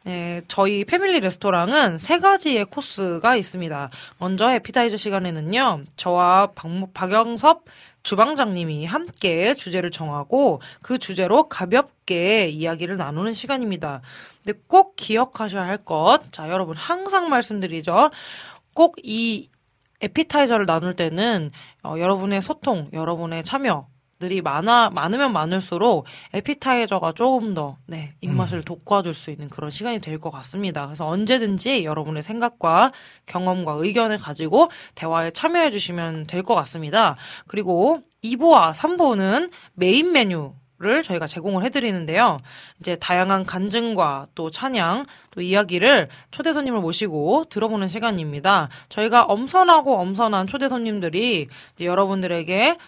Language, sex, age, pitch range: Korean, female, 20-39, 170-240 Hz